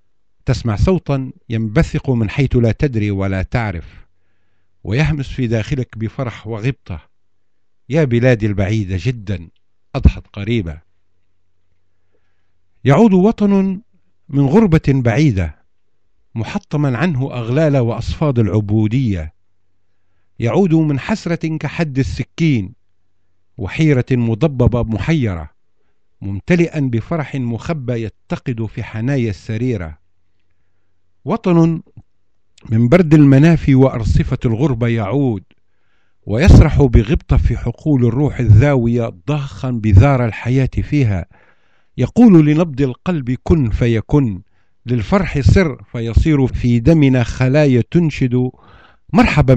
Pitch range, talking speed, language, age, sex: 100-140 Hz, 90 wpm, Arabic, 50-69, male